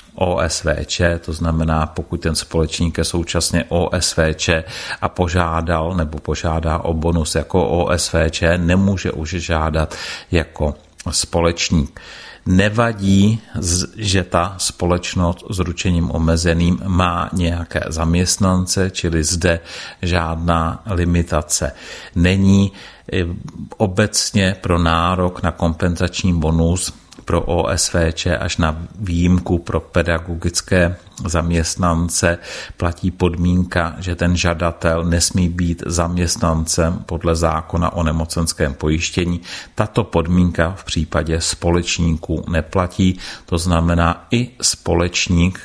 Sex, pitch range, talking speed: male, 85-90 Hz, 95 wpm